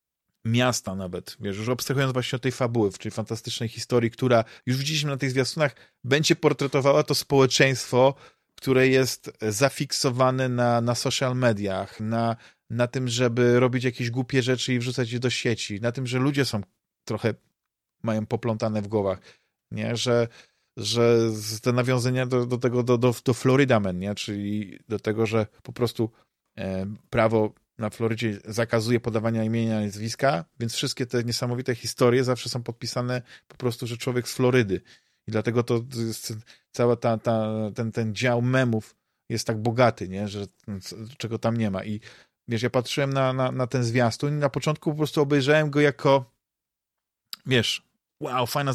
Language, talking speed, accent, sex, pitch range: Polish, 165 wpm, native, male, 115-135 Hz